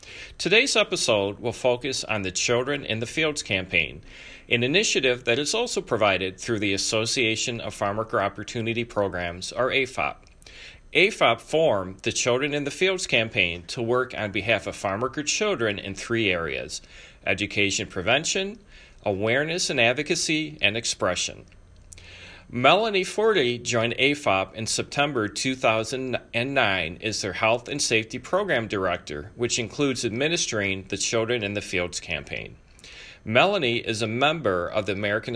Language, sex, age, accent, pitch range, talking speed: English, male, 40-59, American, 100-135 Hz, 135 wpm